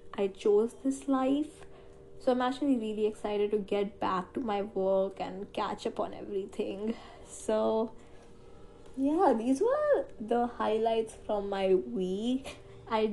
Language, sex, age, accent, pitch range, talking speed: English, female, 20-39, Indian, 195-255 Hz, 135 wpm